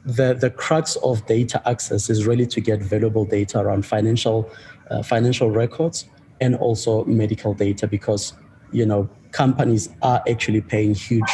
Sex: male